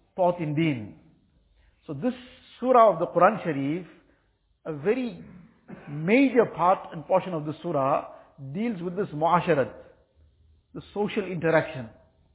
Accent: Indian